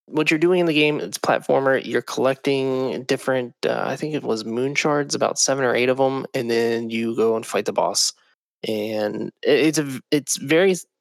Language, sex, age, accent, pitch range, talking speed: English, male, 20-39, American, 115-145 Hz, 200 wpm